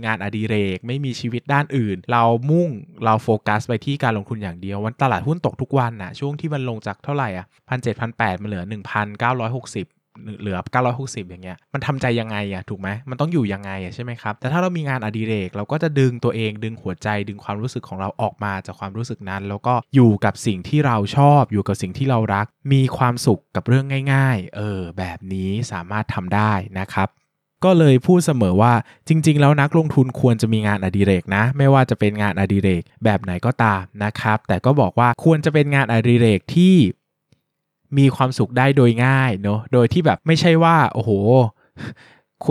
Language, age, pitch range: Thai, 20-39, 100-135 Hz